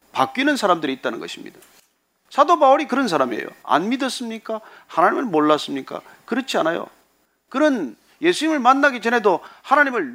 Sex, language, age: male, Korean, 40-59